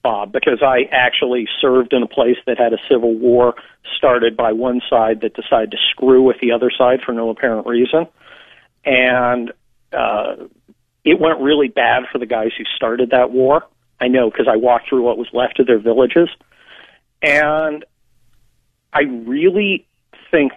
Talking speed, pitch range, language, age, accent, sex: 170 wpm, 120-145 Hz, English, 50-69, American, male